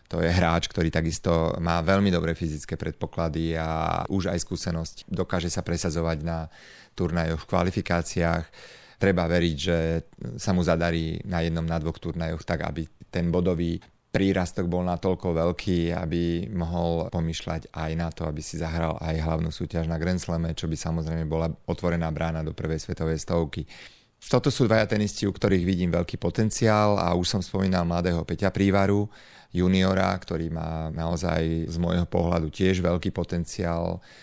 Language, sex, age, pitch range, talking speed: Slovak, male, 30-49, 80-90 Hz, 160 wpm